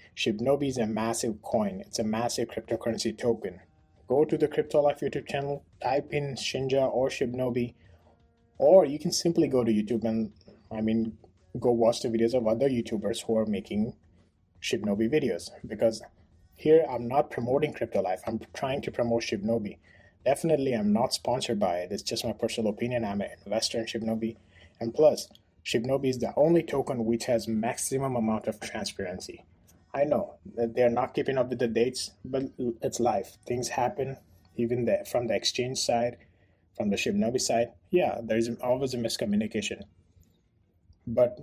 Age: 30-49